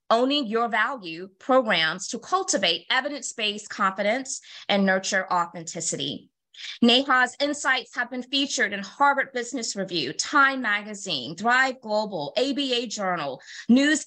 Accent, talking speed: American, 115 wpm